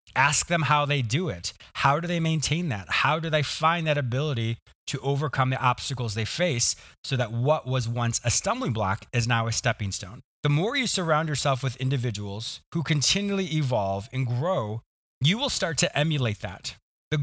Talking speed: 190 wpm